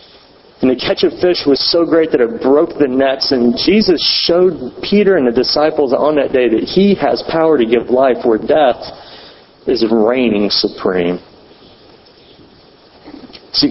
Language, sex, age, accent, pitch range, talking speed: English, male, 40-59, American, 120-160 Hz, 160 wpm